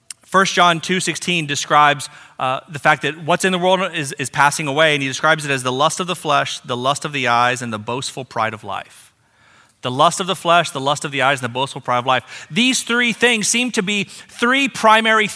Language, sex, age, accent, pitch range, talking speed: English, male, 30-49, American, 140-205 Hz, 240 wpm